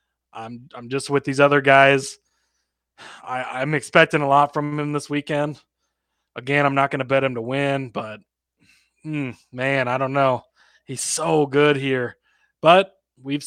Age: 20-39